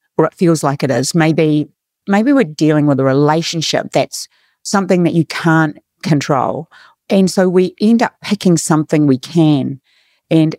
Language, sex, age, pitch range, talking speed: English, female, 40-59, 150-180 Hz, 165 wpm